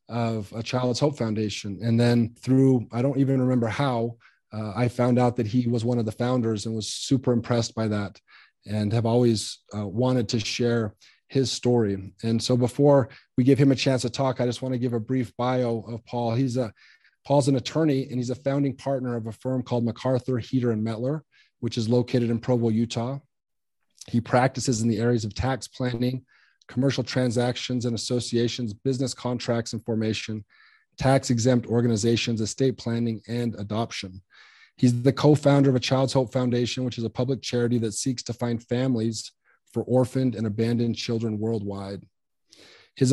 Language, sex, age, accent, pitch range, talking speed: English, male, 30-49, American, 115-130 Hz, 180 wpm